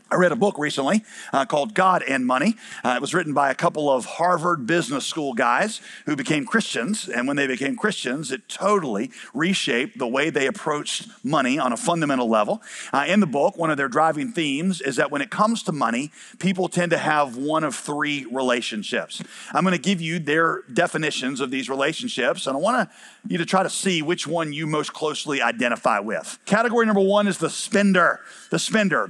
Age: 50-69